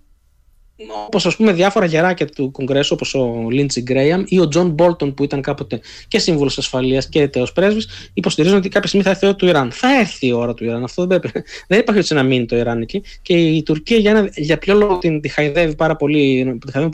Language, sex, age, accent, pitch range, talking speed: Greek, male, 20-39, native, 130-180 Hz, 215 wpm